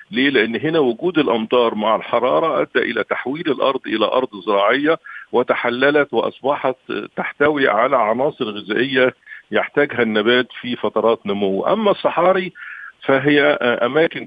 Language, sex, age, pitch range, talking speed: Arabic, male, 50-69, 115-145 Hz, 120 wpm